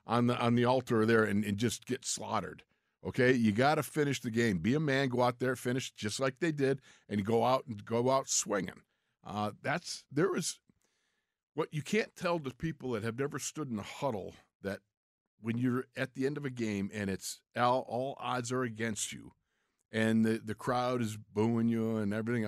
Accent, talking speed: American, 210 wpm